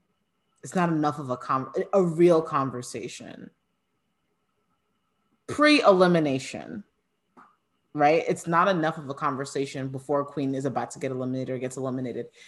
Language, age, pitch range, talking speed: English, 30-49, 135-180 Hz, 135 wpm